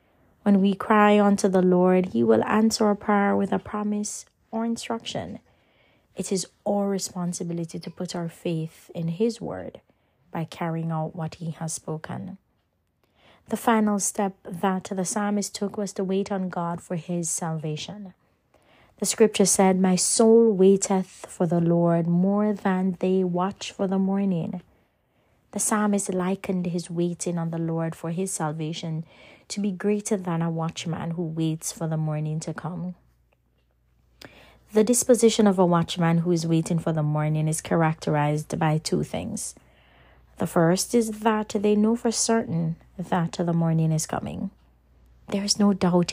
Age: 20-39